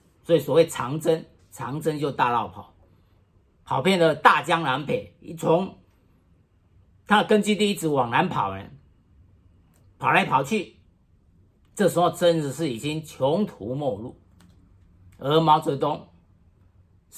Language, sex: Chinese, male